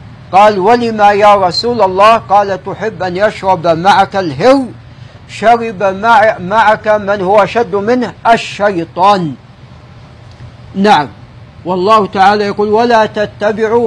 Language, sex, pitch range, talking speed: Arabic, male, 170-220 Hz, 105 wpm